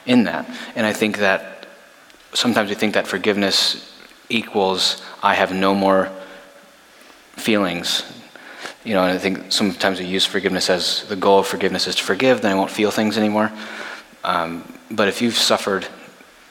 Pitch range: 95-105 Hz